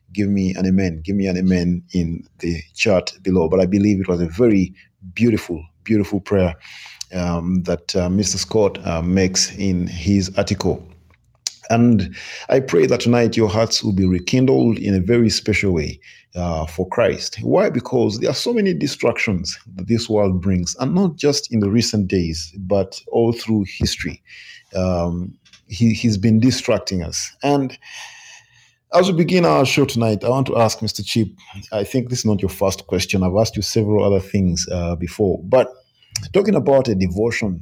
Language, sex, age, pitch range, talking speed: English, male, 40-59, 95-120 Hz, 175 wpm